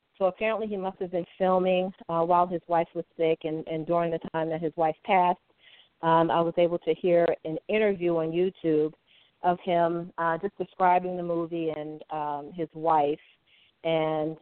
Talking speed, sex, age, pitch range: 185 wpm, female, 40-59, 160-195 Hz